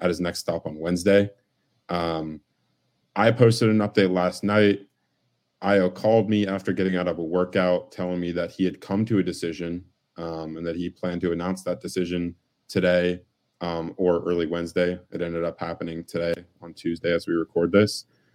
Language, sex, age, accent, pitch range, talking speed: English, male, 20-39, American, 85-100 Hz, 185 wpm